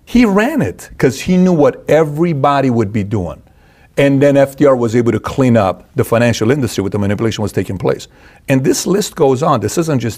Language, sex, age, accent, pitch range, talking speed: English, male, 40-59, American, 110-130 Hz, 210 wpm